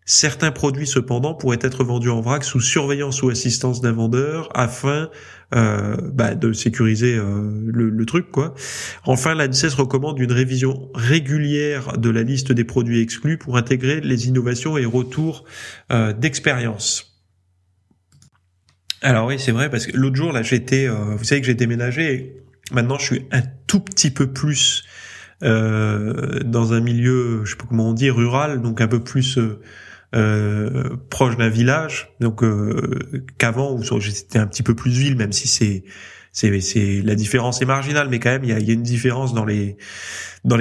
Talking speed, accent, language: 180 wpm, French, French